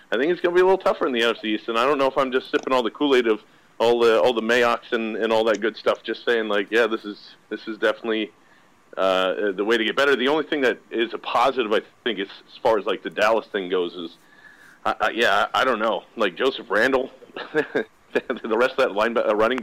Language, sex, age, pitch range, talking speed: English, male, 40-59, 110-150 Hz, 265 wpm